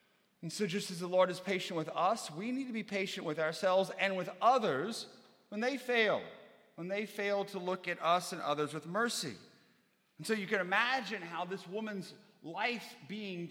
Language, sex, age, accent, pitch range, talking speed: English, male, 40-59, American, 155-205 Hz, 195 wpm